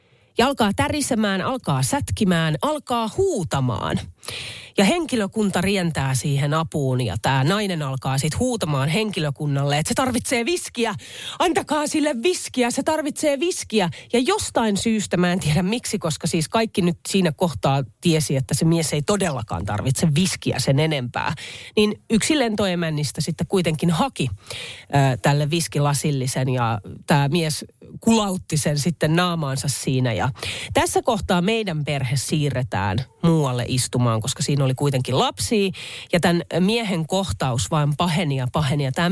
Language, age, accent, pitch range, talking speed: Finnish, 30-49, native, 135-200 Hz, 140 wpm